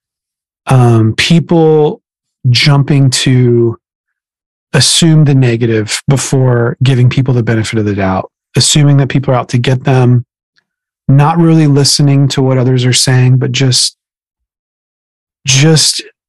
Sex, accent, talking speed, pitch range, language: male, American, 125 wpm, 120-150 Hz, English